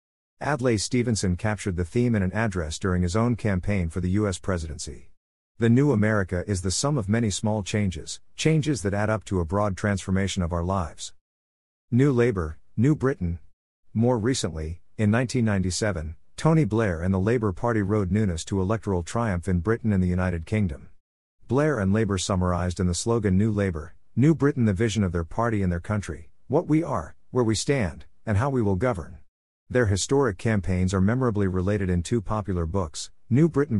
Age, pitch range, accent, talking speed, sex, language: 50-69, 90-115 Hz, American, 185 wpm, male, English